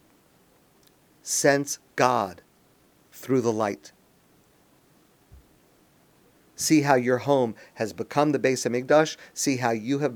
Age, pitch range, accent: 50-69, 110-145 Hz, American